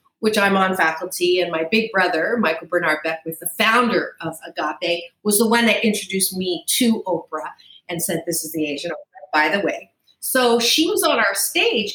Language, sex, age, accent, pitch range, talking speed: English, female, 40-59, American, 195-260 Hz, 195 wpm